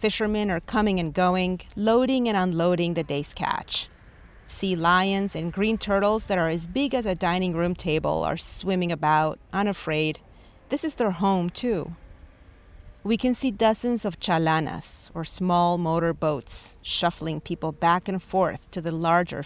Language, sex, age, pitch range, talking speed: English, female, 40-59, 160-200 Hz, 160 wpm